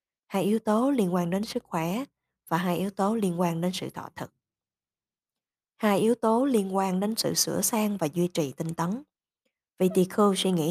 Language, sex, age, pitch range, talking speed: Vietnamese, female, 20-39, 175-220 Hz, 205 wpm